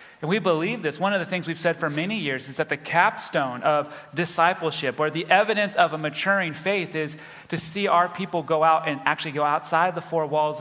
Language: English